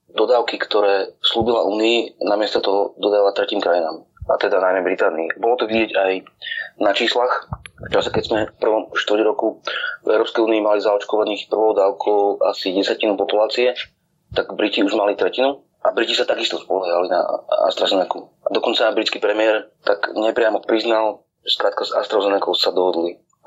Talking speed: 150 wpm